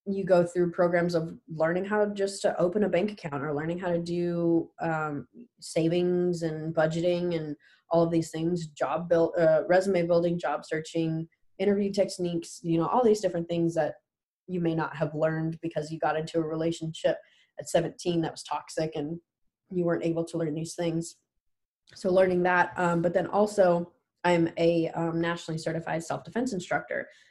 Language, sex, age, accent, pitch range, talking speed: English, female, 20-39, American, 160-185 Hz, 175 wpm